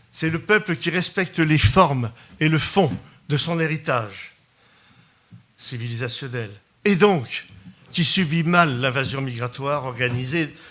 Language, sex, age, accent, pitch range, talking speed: French, male, 60-79, French, 130-175 Hz, 125 wpm